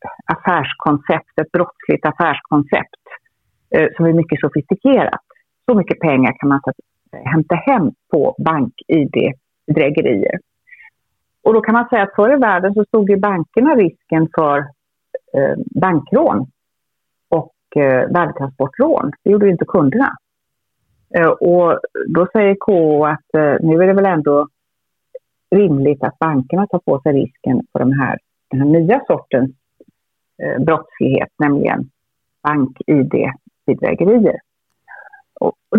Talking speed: 120 wpm